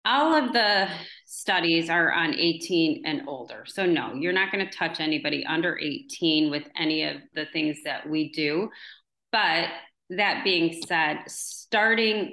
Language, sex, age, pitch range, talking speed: English, female, 30-49, 160-195 Hz, 155 wpm